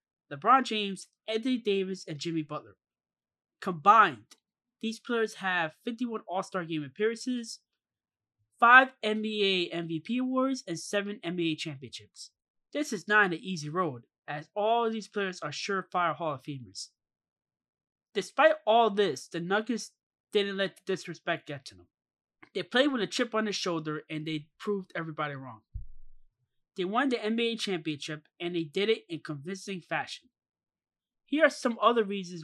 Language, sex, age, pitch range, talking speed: English, male, 20-39, 155-215 Hz, 150 wpm